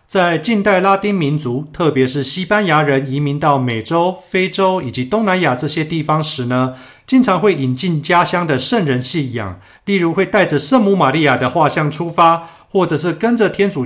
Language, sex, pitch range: Chinese, male, 130-185 Hz